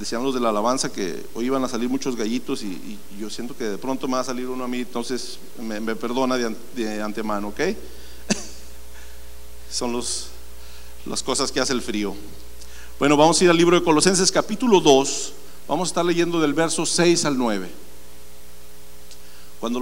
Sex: male